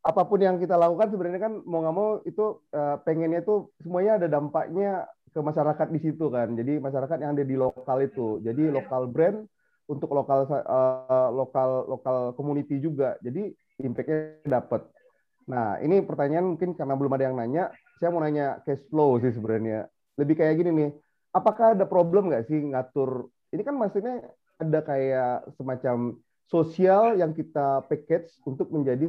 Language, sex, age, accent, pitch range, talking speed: Indonesian, male, 30-49, native, 135-180 Hz, 155 wpm